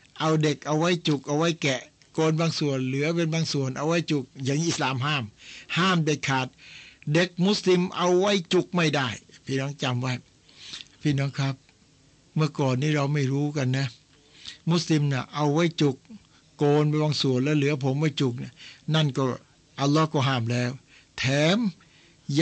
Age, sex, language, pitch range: 60-79, male, Thai, 130-155 Hz